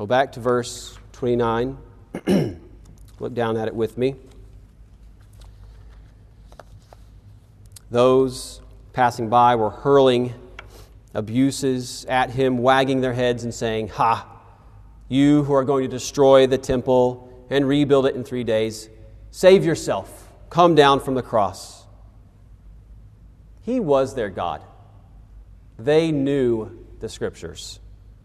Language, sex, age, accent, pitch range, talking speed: English, male, 40-59, American, 100-130 Hz, 115 wpm